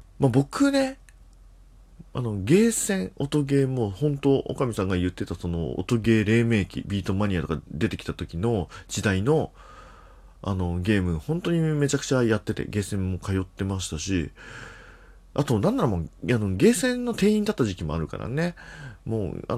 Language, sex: Japanese, male